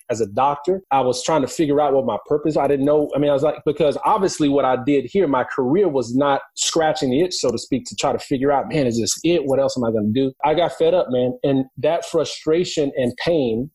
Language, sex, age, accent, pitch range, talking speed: English, male, 30-49, American, 125-150 Hz, 265 wpm